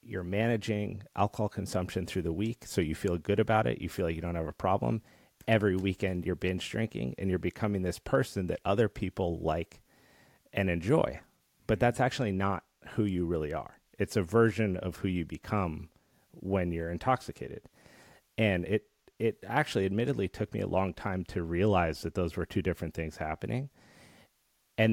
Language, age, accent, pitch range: English, 30-49, American, 85-105 Hz